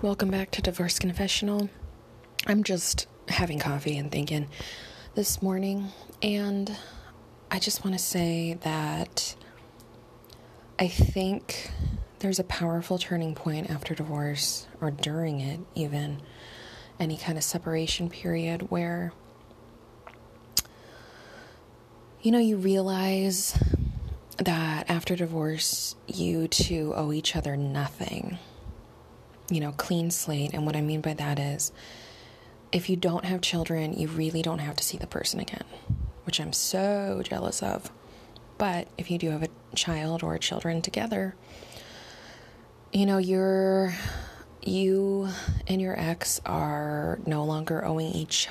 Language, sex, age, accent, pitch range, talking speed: English, female, 20-39, American, 155-190 Hz, 130 wpm